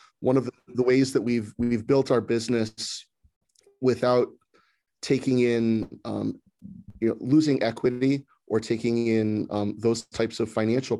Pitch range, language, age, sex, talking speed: 105-115 Hz, English, 30-49, male, 140 wpm